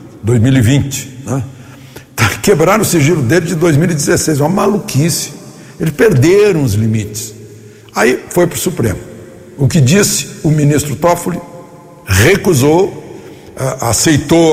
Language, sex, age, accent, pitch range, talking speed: Portuguese, male, 60-79, Brazilian, 110-150 Hz, 105 wpm